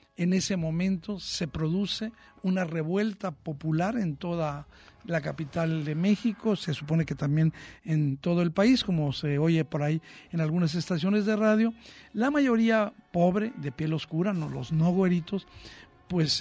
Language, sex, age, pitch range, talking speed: Spanish, male, 60-79, 155-200 Hz, 155 wpm